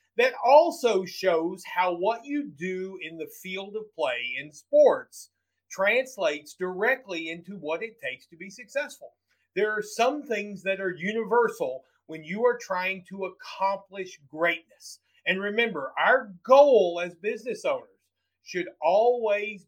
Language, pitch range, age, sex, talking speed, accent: English, 165-235 Hz, 40-59, male, 140 wpm, American